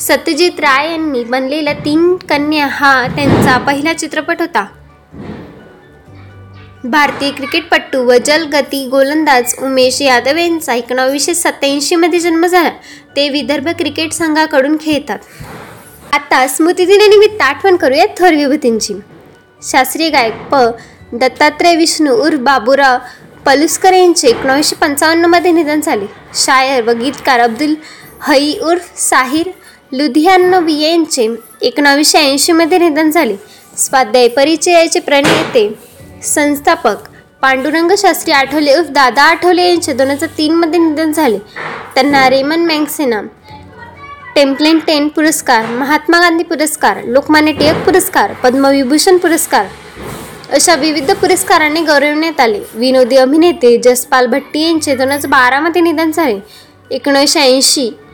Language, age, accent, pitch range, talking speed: Marathi, 10-29, native, 270-335 Hz, 110 wpm